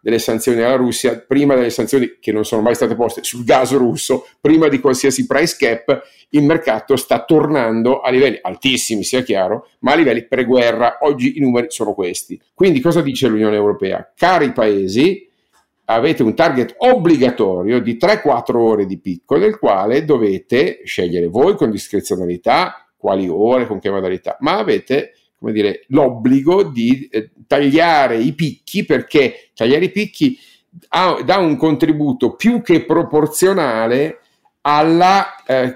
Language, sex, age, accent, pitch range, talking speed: Italian, male, 50-69, native, 115-160 Hz, 150 wpm